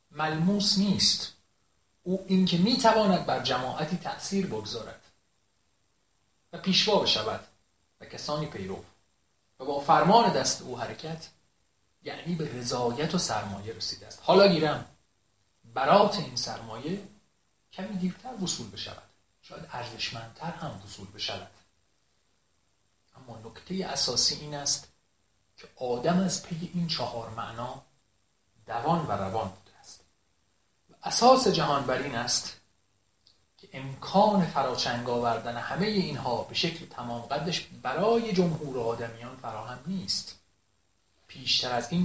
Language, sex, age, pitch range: Persian, male, 40-59, 105-175 Hz